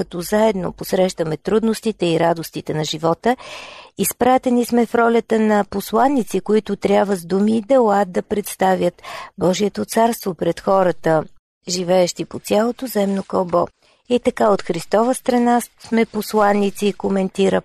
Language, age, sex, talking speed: Bulgarian, 40-59, female, 135 wpm